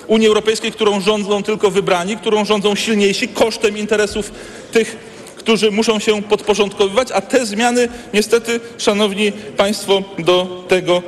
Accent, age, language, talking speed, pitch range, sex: native, 40-59, Polish, 130 wpm, 180-225 Hz, male